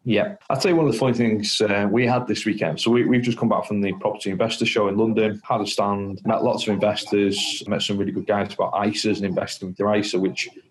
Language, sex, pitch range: English, male, 100-110 Hz